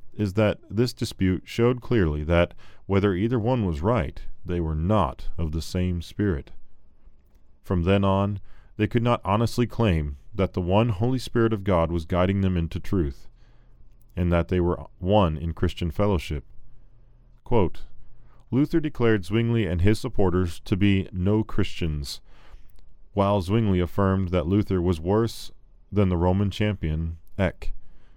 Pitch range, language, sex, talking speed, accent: 85-110 Hz, English, male, 150 wpm, American